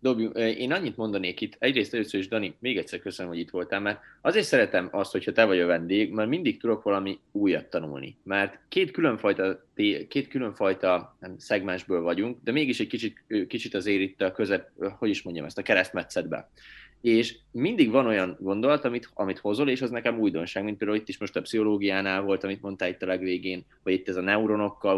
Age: 30-49